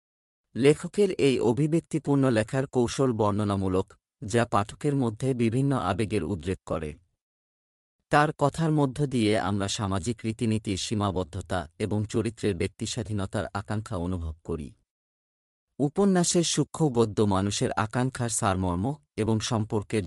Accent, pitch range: native, 100-130 Hz